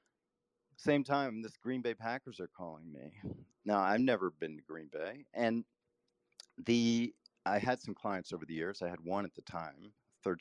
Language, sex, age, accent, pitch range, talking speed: English, male, 40-59, American, 105-140 Hz, 185 wpm